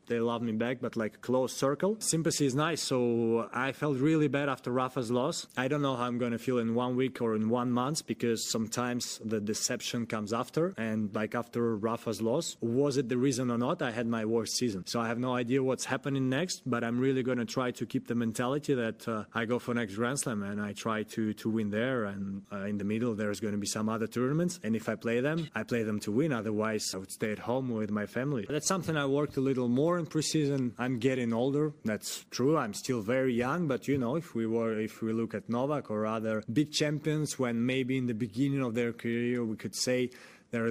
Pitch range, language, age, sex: 115-135 Hz, English, 20-39, male